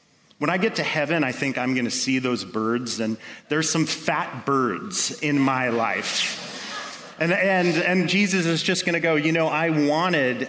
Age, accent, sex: 40-59, American, male